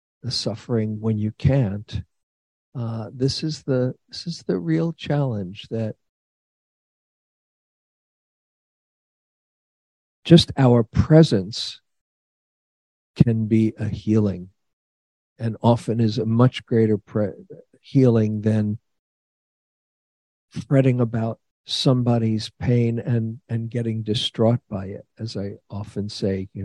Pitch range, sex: 105-125 Hz, male